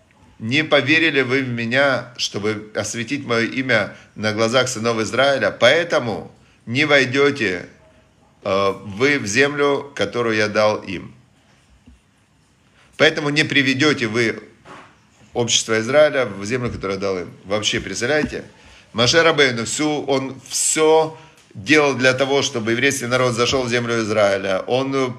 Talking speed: 125 wpm